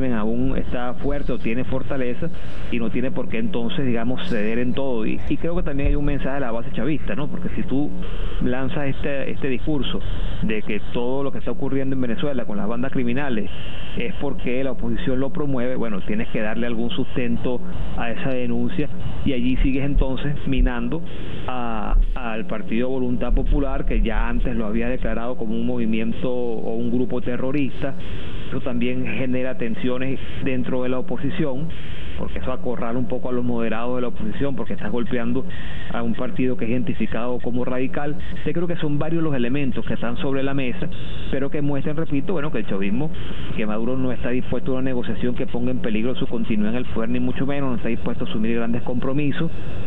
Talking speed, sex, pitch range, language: 195 wpm, male, 120-140 Hz, Spanish